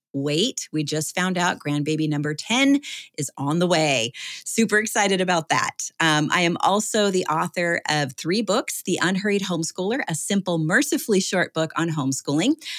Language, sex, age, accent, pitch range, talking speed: English, female, 30-49, American, 150-190 Hz, 165 wpm